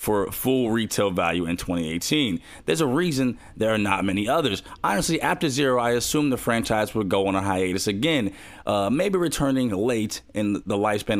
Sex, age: male, 30-49